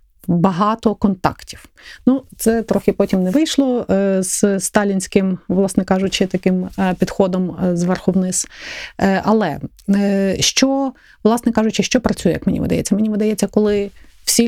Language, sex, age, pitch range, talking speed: Ukrainian, female, 30-49, 185-220 Hz, 120 wpm